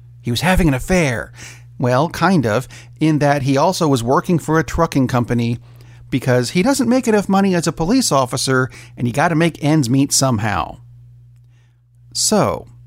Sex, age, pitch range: male, 50-69, 120-155 Hz